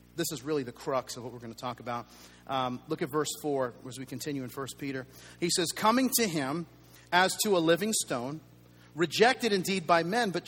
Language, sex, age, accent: English, male, 40-59, American